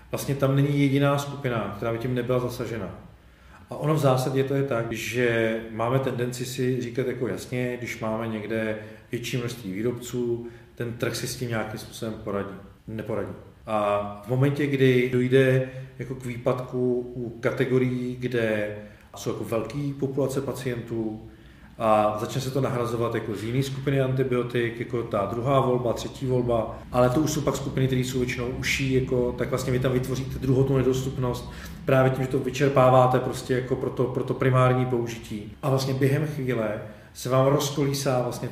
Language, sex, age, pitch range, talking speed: Czech, male, 40-59, 115-135 Hz, 170 wpm